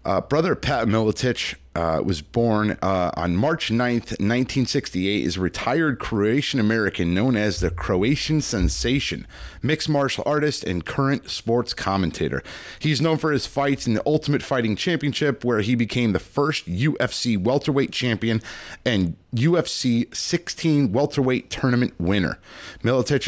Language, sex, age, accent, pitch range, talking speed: English, male, 30-49, American, 105-145 Hz, 135 wpm